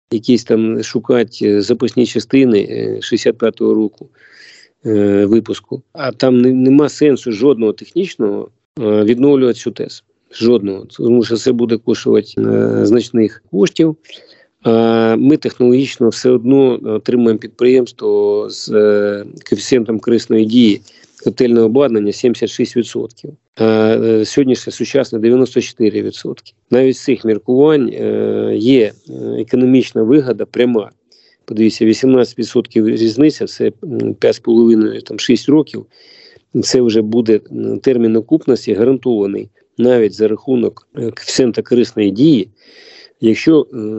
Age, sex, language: 40-59, male, Ukrainian